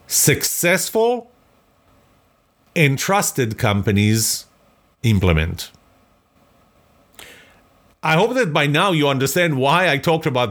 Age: 40-59